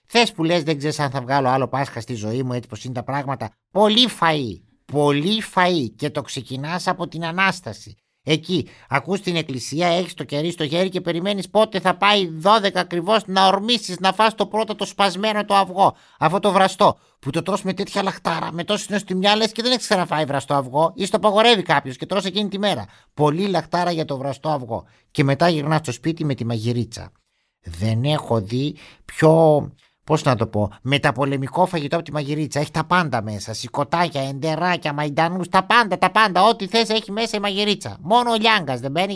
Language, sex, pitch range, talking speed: Greek, male, 135-195 Hz, 200 wpm